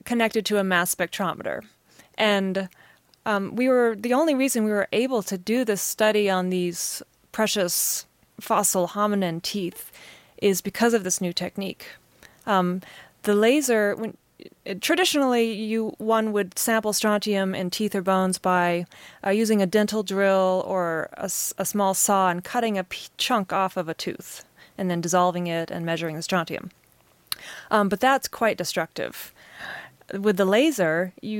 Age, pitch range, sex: 20-39, 185-220 Hz, female